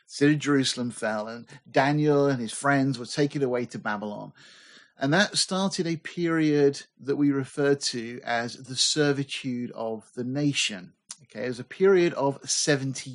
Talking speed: 165 wpm